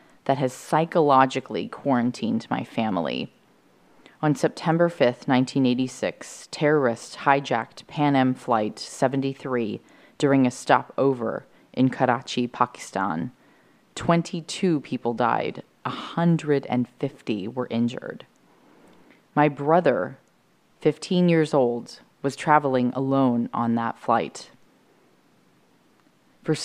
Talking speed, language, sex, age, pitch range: 90 wpm, English, female, 30-49, 125-155 Hz